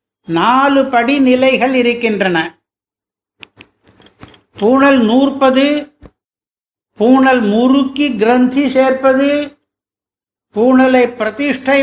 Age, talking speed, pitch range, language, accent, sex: 60-79, 60 wpm, 205-260 Hz, Tamil, native, male